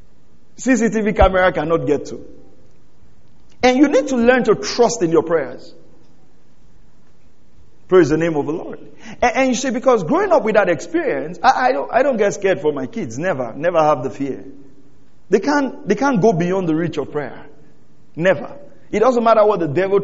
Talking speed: 190 wpm